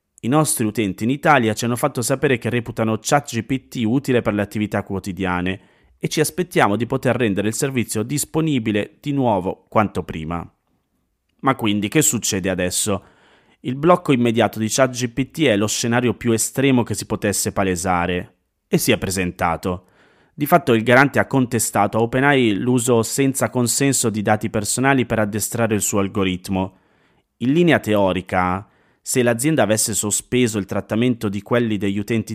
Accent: native